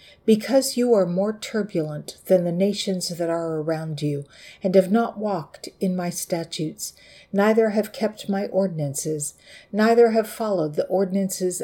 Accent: American